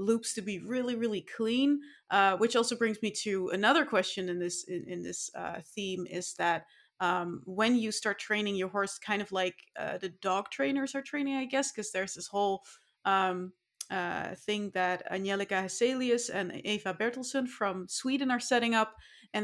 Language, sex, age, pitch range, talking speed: Dutch, female, 30-49, 185-225 Hz, 185 wpm